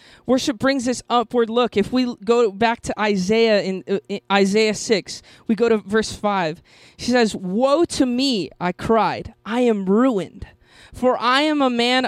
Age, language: 20-39, English